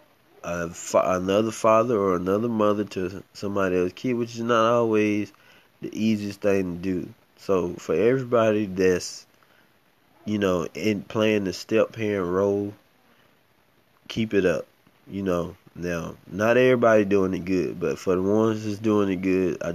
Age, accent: 20-39, American